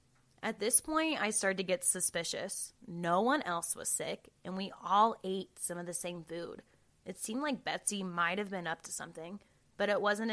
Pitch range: 170-200 Hz